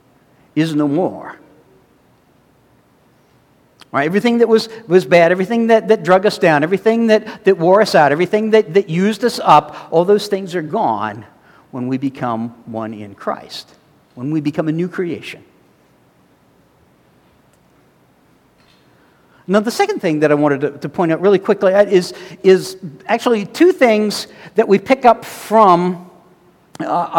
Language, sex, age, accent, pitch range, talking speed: English, male, 60-79, American, 165-225 Hz, 150 wpm